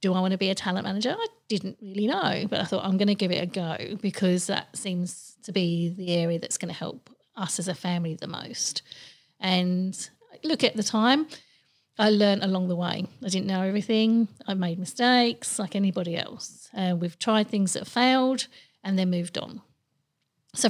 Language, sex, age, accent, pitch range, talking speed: English, female, 40-59, British, 185-220 Hz, 205 wpm